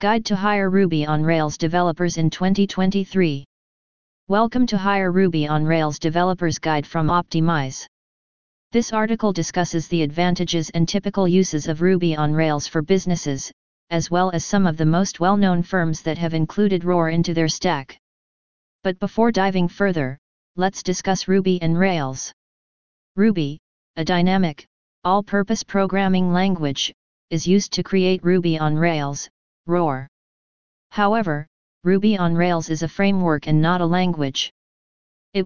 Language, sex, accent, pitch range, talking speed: English, female, American, 160-195 Hz, 140 wpm